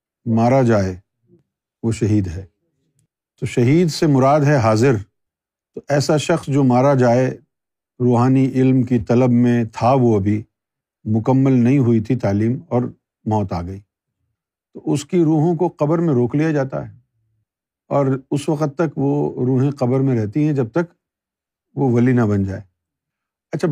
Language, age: Urdu, 50-69